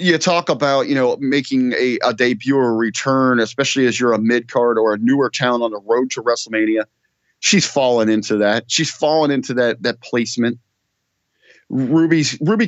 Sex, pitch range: male, 120-165 Hz